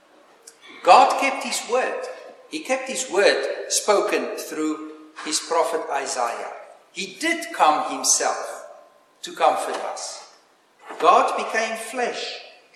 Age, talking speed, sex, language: 50-69, 110 wpm, male, English